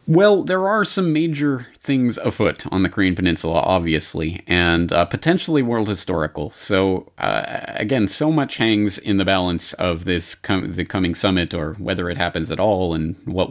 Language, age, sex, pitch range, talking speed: English, 30-49, male, 85-105 Hz, 180 wpm